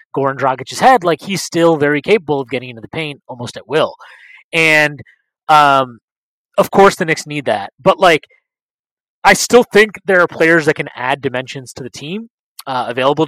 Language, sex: English, male